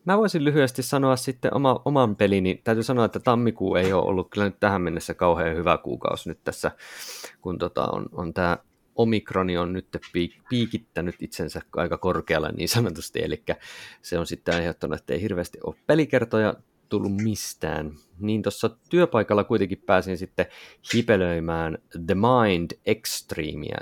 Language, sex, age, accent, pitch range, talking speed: Finnish, male, 30-49, native, 85-115 Hz, 150 wpm